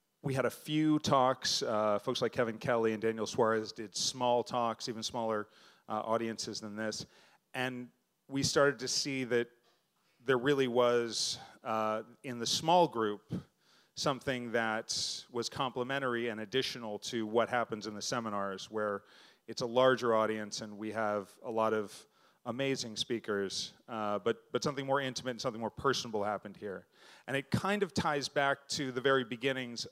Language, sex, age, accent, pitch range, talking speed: English, male, 30-49, American, 110-130 Hz, 165 wpm